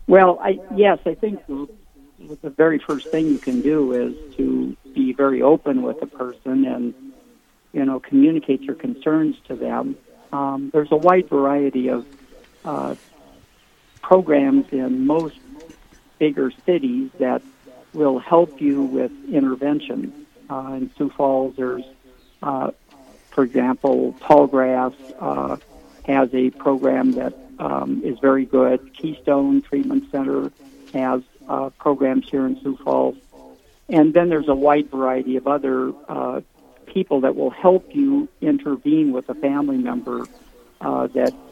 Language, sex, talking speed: English, male, 135 wpm